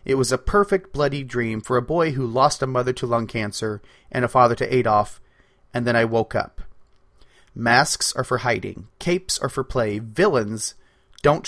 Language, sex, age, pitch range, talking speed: English, male, 30-49, 115-145 Hz, 190 wpm